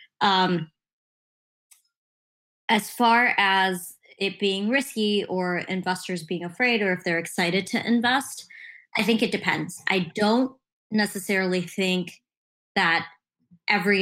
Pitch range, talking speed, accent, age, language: 170-200 Hz, 115 wpm, American, 20-39, English